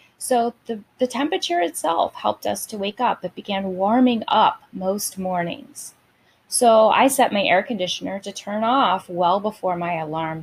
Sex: female